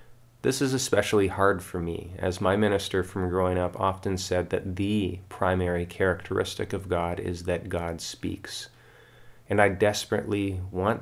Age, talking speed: 30-49, 150 wpm